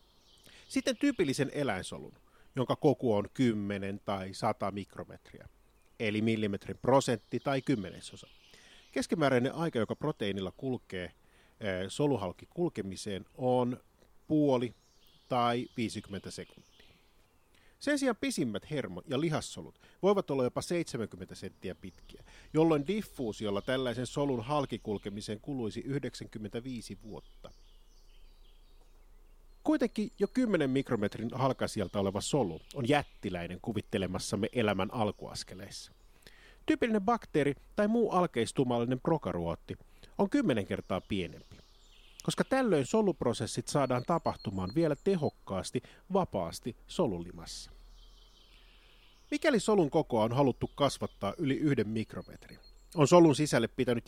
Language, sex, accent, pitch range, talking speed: Finnish, male, native, 95-145 Hz, 100 wpm